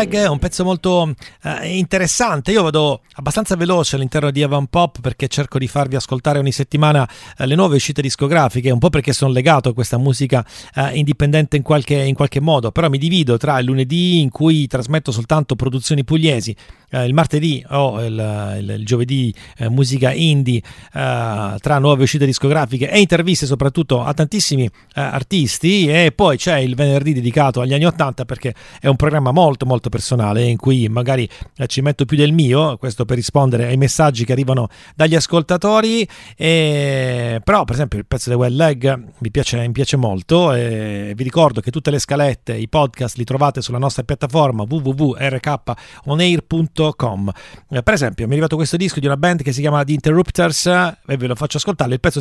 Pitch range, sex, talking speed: 125-155 Hz, male, 180 wpm